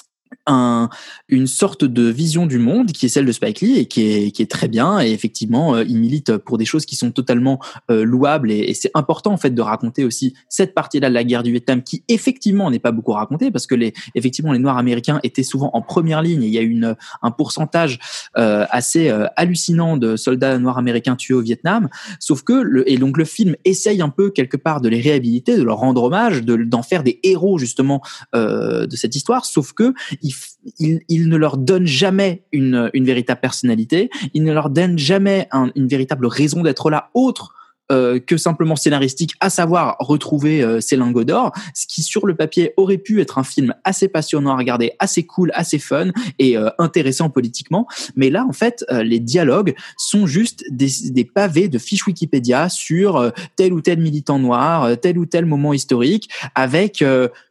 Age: 20-39